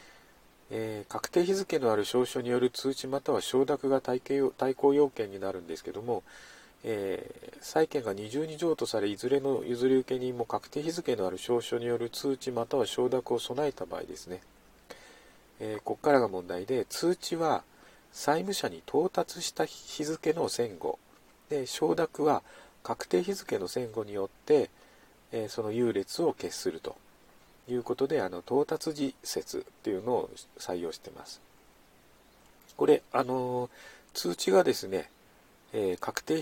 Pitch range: 125-160 Hz